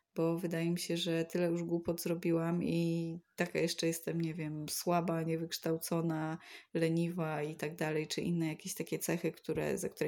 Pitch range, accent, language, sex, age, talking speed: 160-185 Hz, native, Polish, female, 20-39, 165 wpm